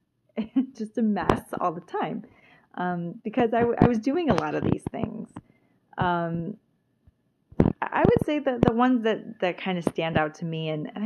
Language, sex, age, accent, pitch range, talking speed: English, female, 30-49, American, 155-210 Hz, 190 wpm